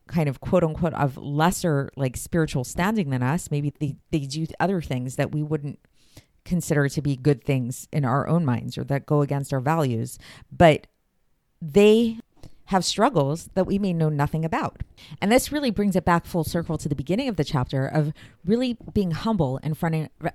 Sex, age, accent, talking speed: female, 40-59, American, 195 wpm